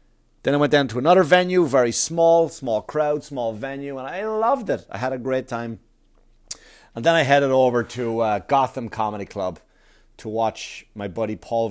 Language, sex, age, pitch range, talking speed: English, male, 30-49, 105-140 Hz, 190 wpm